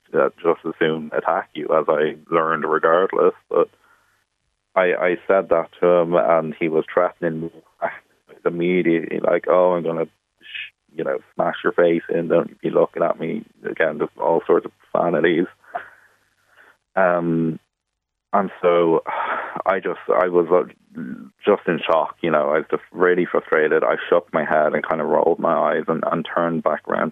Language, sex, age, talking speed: English, male, 30-49, 170 wpm